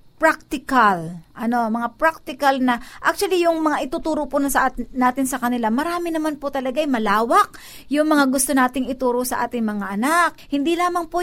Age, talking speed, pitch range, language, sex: 50-69, 160 wpm, 230-310 Hz, Filipino, female